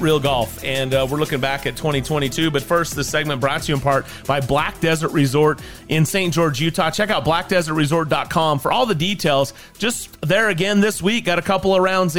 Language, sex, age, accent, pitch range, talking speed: English, male, 30-49, American, 125-170 Hz, 210 wpm